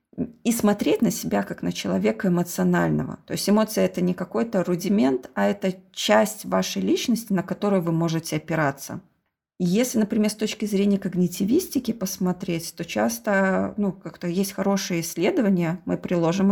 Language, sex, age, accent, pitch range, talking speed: Russian, female, 20-39, native, 175-210 Hz, 155 wpm